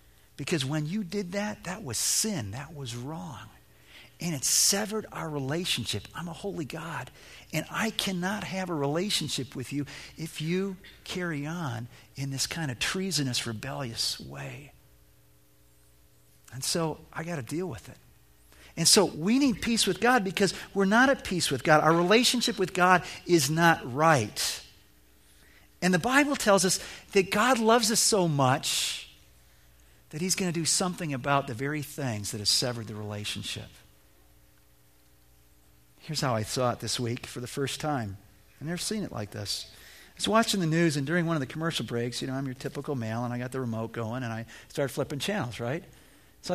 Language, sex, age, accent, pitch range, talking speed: English, male, 50-69, American, 110-180 Hz, 185 wpm